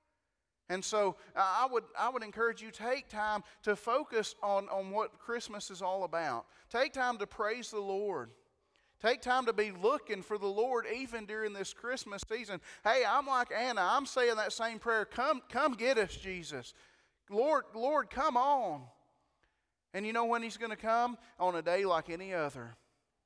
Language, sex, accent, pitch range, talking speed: English, male, American, 170-220 Hz, 185 wpm